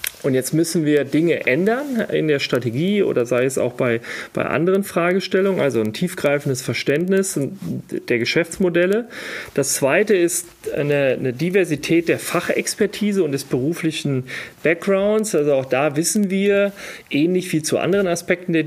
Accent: German